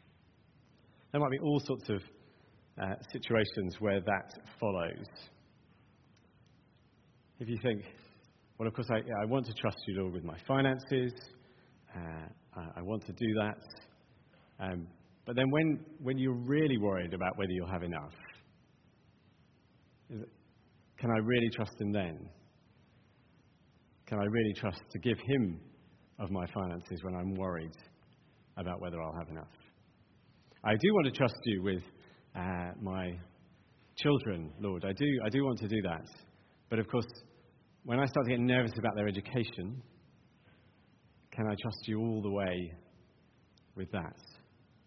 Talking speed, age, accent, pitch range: 150 wpm, 40-59, British, 95-125 Hz